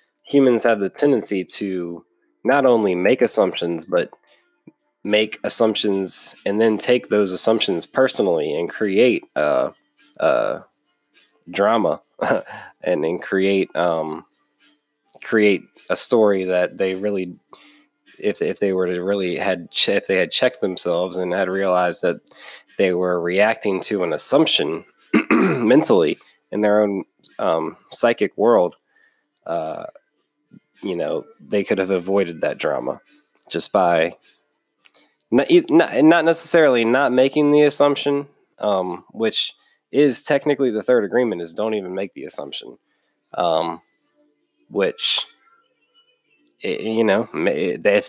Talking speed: 120 wpm